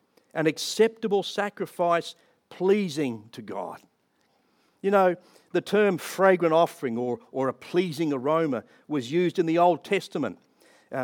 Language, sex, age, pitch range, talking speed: English, male, 50-69, 135-175 Hz, 130 wpm